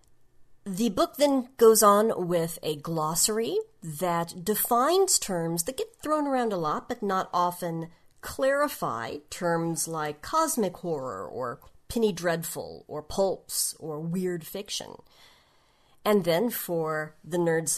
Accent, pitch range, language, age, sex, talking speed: American, 165-225 Hz, English, 40-59, female, 130 wpm